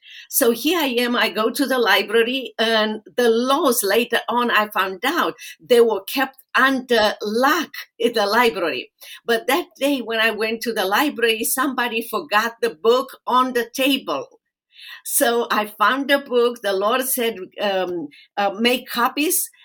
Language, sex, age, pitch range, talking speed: English, female, 50-69, 215-255 Hz, 160 wpm